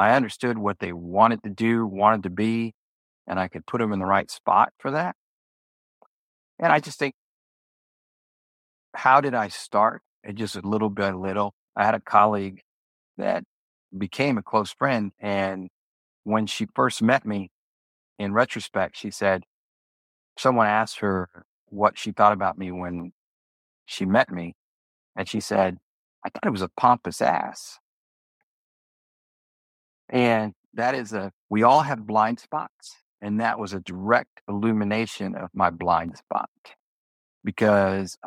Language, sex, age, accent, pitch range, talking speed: English, male, 50-69, American, 90-110 Hz, 150 wpm